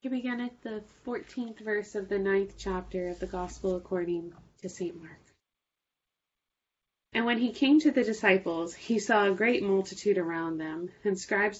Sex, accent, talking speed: female, American, 170 wpm